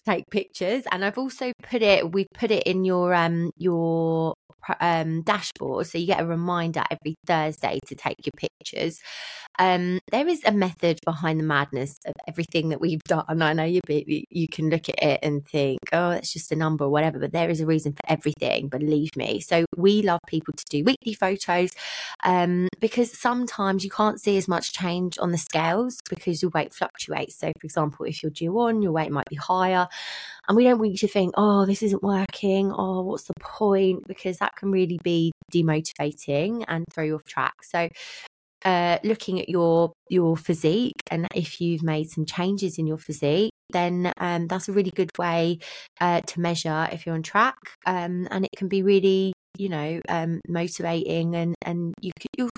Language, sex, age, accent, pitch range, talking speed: English, female, 20-39, British, 160-195 Hz, 200 wpm